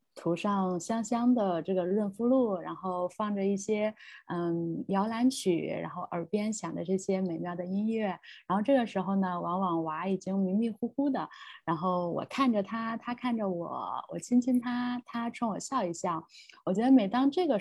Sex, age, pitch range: female, 20-39, 180-245 Hz